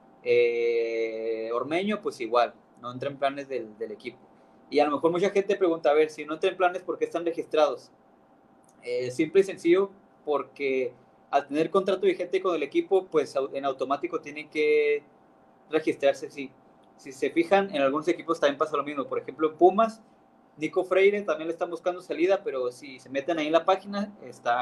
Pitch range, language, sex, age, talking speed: 130-180 Hz, Spanish, male, 20-39, 185 wpm